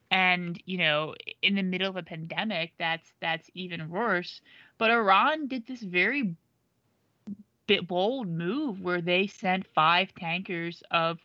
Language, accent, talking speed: English, American, 145 wpm